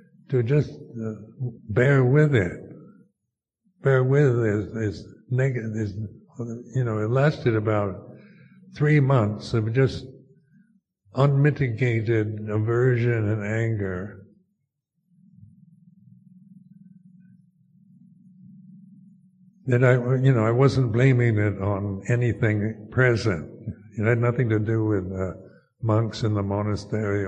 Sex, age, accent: male, 60-79, American